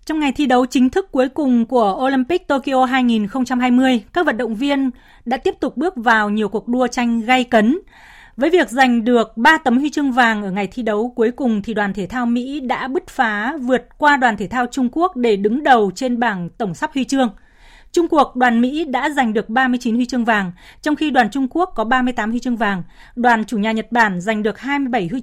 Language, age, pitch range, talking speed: Vietnamese, 20-39, 225-275 Hz, 230 wpm